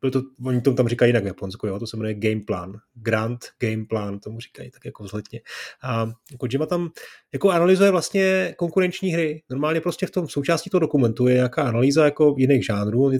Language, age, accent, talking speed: Czech, 30-49, native, 190 wpm